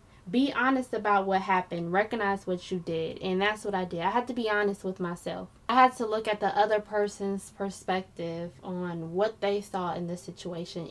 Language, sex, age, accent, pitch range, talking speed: English, female, 10-29, American, 180-210 Hz, 205 wpm